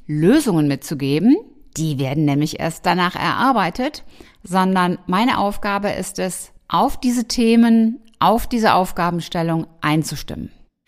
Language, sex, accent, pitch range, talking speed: German, female, German, 170-245 Hz, 110 wpm